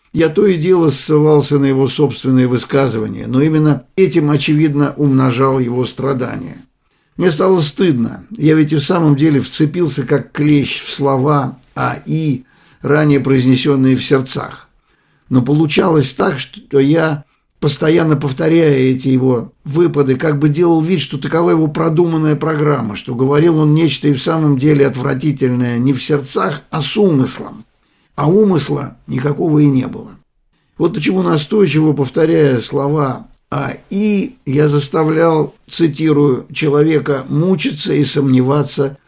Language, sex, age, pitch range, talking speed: Russian, male, 50-69, 135-155 Hz, 145 wpm